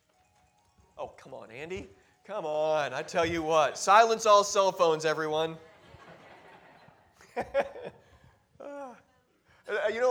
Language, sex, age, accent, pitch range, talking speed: English, male, 30-49, American, 145-200 Hz, 100 wpm